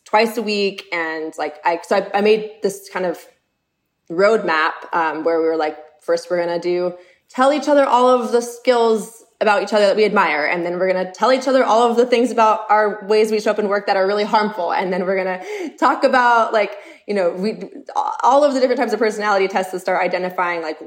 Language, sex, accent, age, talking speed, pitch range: English, female, American, 20-39, 240 wpm, 170-220 Hz